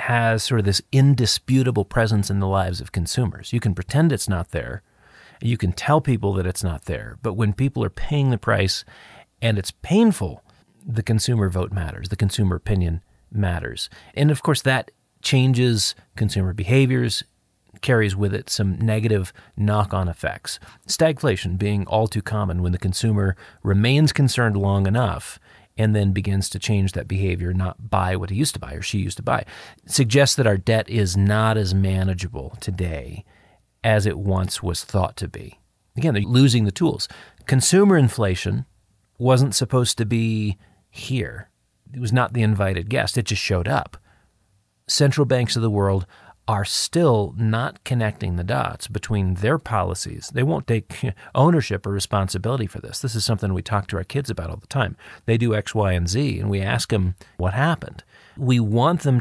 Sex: male